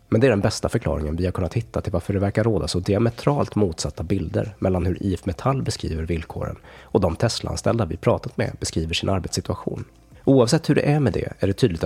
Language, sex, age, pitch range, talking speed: Swedish, male, 30-49, 85-115 Hz, 220 wpm